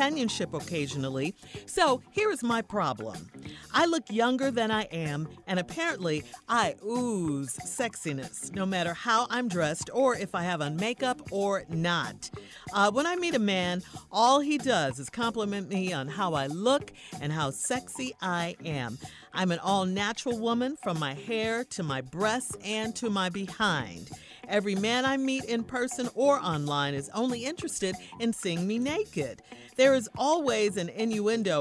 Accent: American